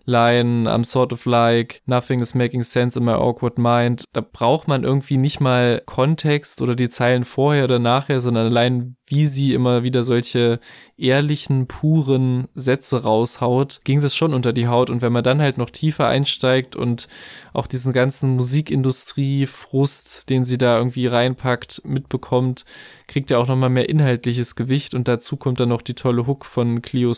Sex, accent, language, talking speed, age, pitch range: male, German, German, 175 wpm, 20-39, 120-140 Hz